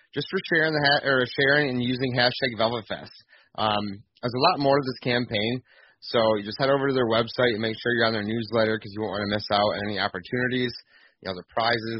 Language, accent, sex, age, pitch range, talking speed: English, American, male, 30-49, 105-125 Hz, 240 wpm